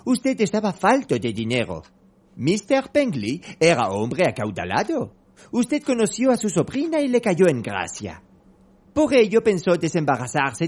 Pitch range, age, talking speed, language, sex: 155-245 Hz, 40-59, 135 wpm, Spanish, male